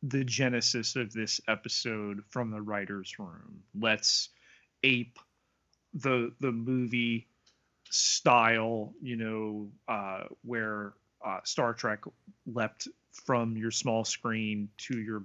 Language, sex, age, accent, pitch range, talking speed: English, male, 30-49, American, 105-120 Hz, 115 wpm